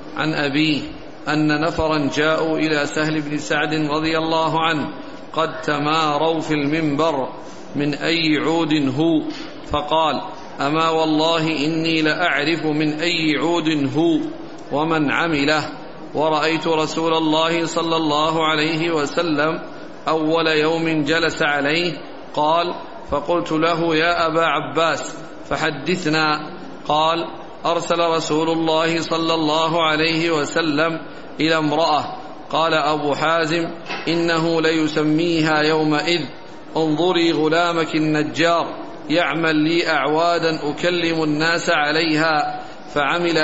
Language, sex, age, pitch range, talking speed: Arabic, male, 50-69, 155-165 Hz, 105 wpm